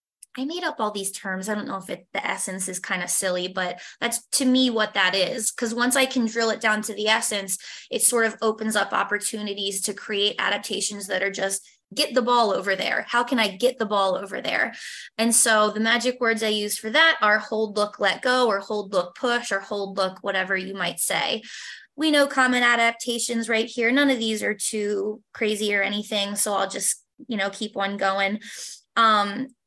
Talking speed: 215 wpm